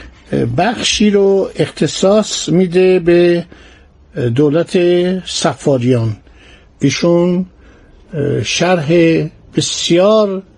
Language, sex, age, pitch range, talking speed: Persian, male, 50-69, 145-185 Hz, 55 wpm